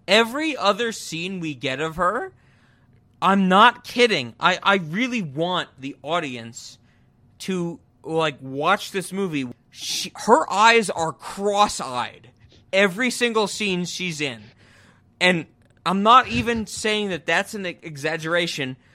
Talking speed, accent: 125 wpm, American